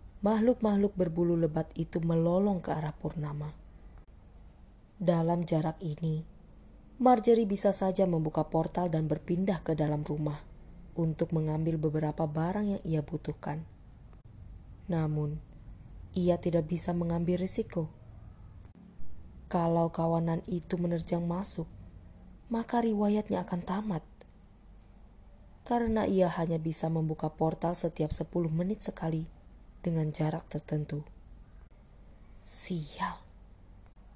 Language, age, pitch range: Indonesian, 20-39, 150-180 Hz